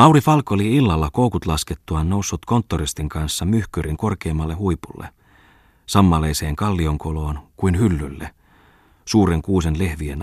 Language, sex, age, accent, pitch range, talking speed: Finnish, male, 40-59, native, 80-95 Hz, 110 wpm